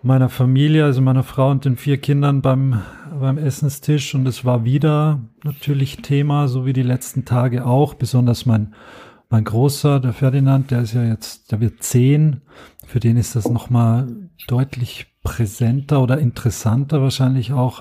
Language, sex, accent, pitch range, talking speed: German, male, German, 115-140 Hz, 165 wpm